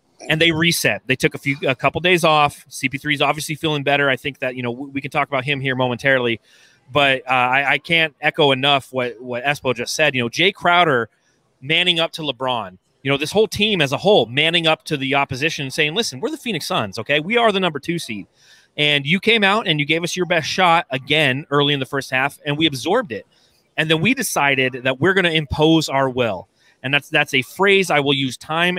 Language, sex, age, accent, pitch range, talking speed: English, male, 30-49, American, 130-165 Hz, 240 wpm